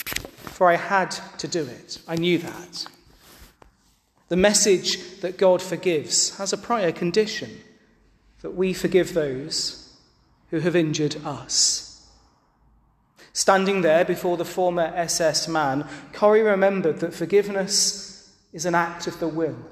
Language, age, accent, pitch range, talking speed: English, 30-49, British, 145-195 Hz, 130 wpm